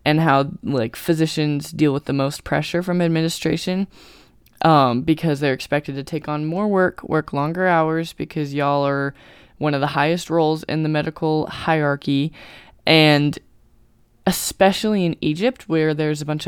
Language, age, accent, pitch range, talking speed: English, 20-39, American, 145-170 Hz, 155 wpm